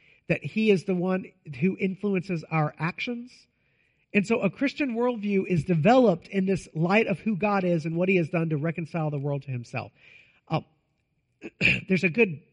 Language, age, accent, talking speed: English, 40-59, American, 180 wpm